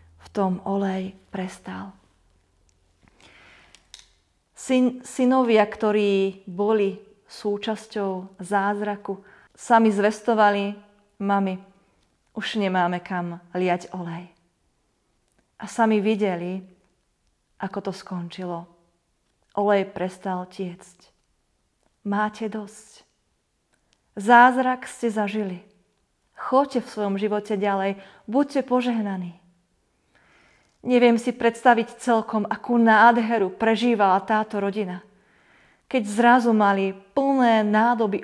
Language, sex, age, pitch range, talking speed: Slovak, female, 30-49, 185-225 Hz, 80 wpm